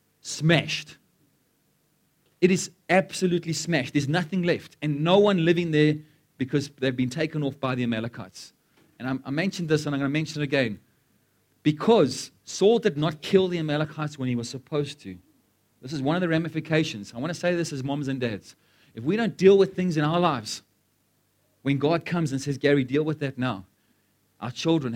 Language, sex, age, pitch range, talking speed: English, male, 30-49, 125-165 Hz, 190 wpm